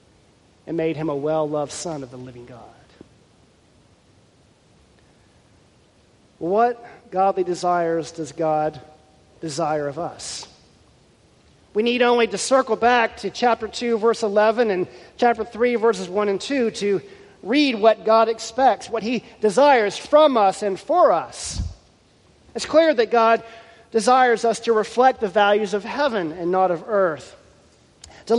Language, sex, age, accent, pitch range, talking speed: English, male, 40-59, American, 165-230 Hz, 140 wpm